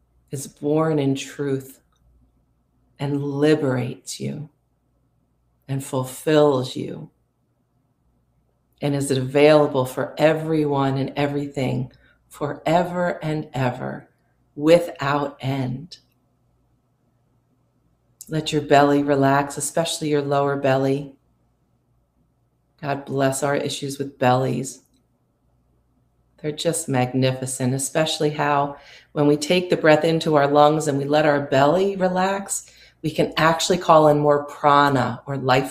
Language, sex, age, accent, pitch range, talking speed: English, female, 40-59, American, 130-150 Hz, 110 wpm